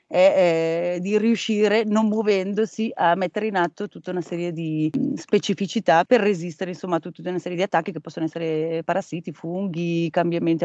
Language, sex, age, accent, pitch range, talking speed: Italian, female, 30-49, native, 175-205 Hz, 170 wpm